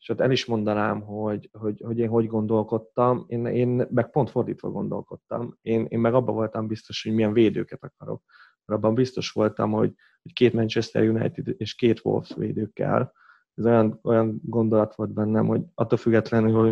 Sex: male